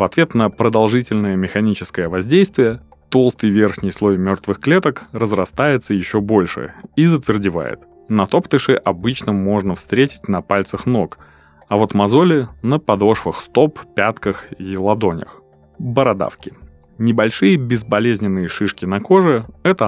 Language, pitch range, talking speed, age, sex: Russian, 95-130 Hz, 120 wpm, 30-49, male